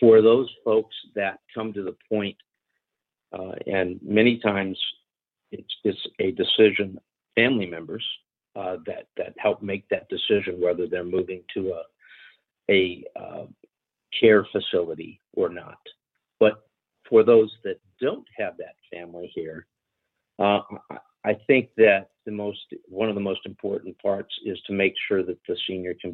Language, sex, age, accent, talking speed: English, male, 50-69, American, 150 wpm